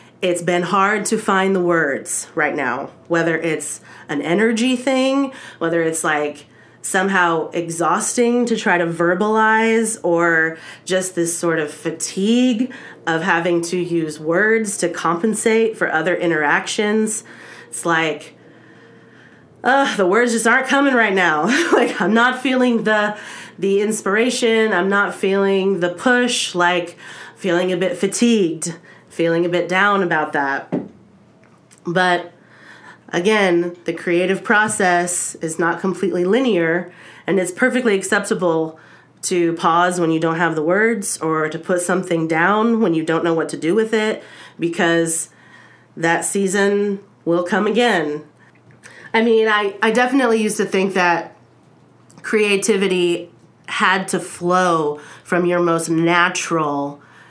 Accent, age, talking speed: American, 30-49, 135 wpm